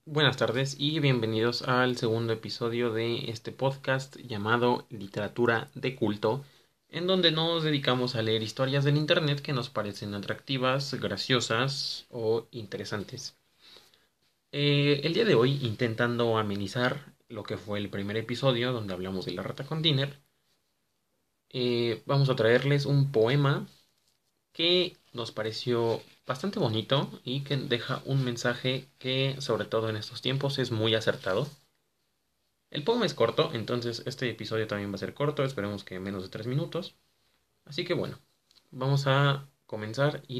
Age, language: 20-39, Spanish